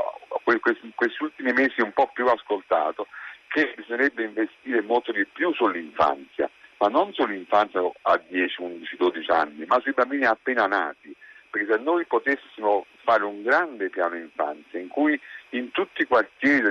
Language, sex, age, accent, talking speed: Italian, male, 50-69, native, 155 wpm